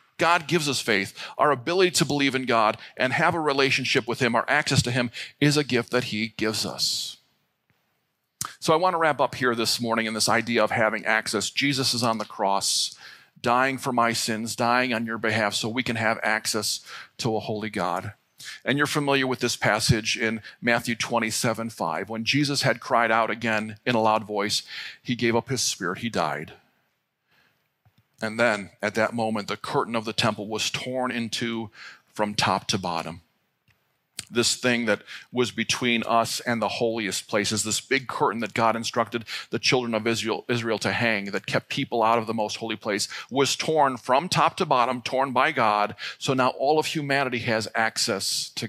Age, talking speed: 40-59, 190 wpm